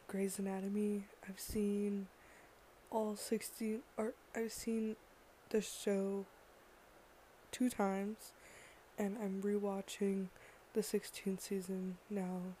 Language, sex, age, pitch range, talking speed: English, female, 20-39, 190-210 Hz, 95 wpm